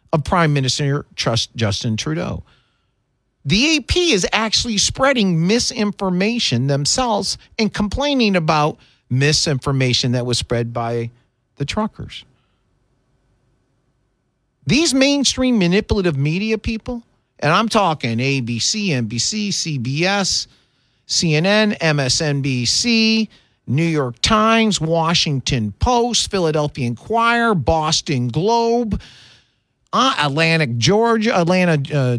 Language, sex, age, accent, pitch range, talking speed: English, male, 40-59, American, 125-215 Hz, 95 wpm